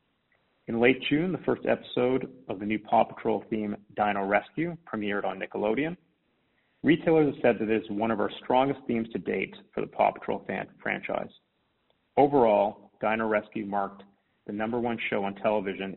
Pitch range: 105-130 Hz